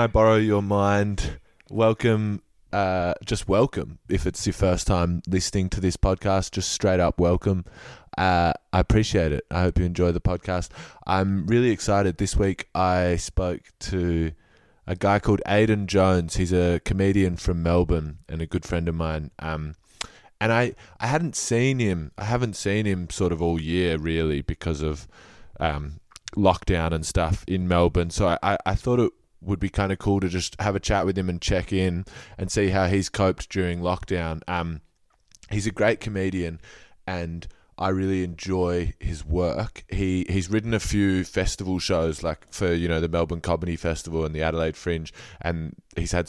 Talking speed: 180 wpm